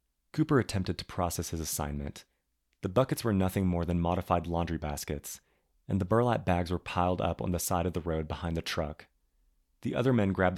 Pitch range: 75-100 Hz